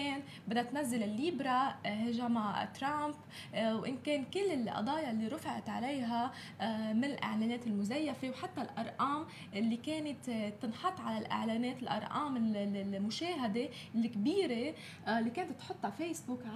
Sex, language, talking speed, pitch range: female, Arabic, 105 wpm, 220-275 Hz